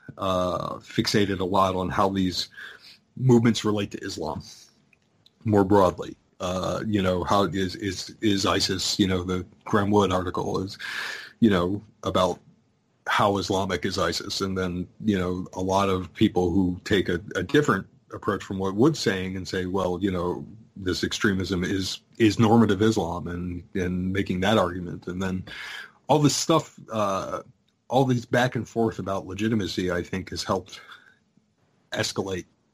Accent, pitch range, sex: American, 90-110 Hz, male